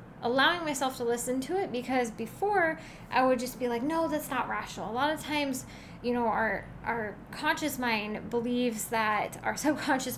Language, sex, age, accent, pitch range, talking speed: English, female, 10-29, American, 235-290 Hz, 185 wpm